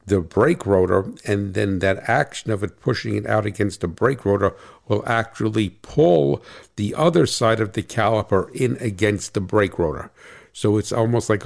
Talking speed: 180 wpm